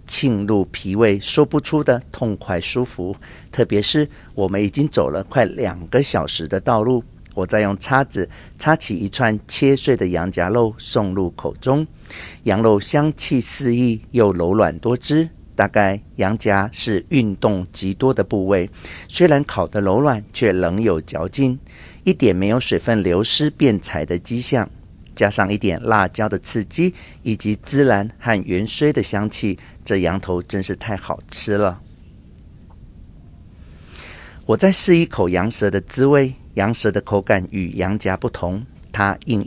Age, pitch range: 50-69, 95-130 Hz